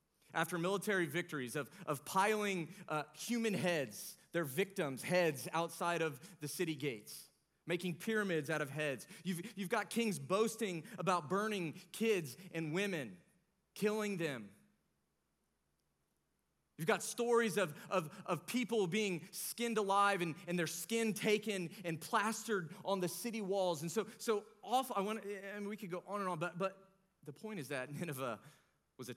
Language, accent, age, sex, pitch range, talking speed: English, American, 30-49, male, 155-210 Hz, 165 wpm